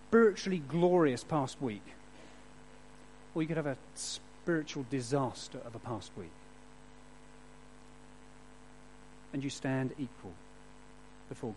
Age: 40-59